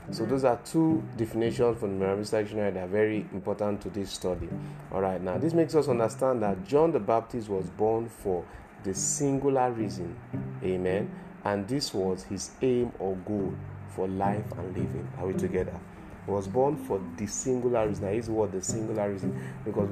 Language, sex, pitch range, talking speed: English, male, 95-110 Hz, 185 wpm